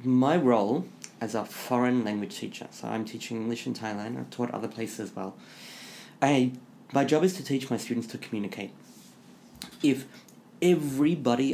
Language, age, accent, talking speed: English, 30-49, British, 155 wpm